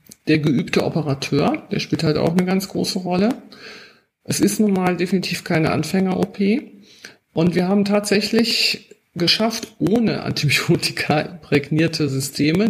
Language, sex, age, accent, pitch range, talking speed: German, male, 50-69, German, 150-200 Hz, 130 wpm